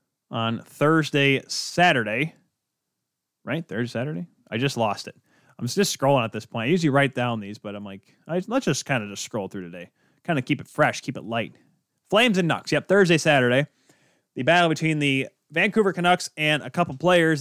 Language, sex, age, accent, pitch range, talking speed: English, male, 30-49, American, 115-155 Hz, 195 wpm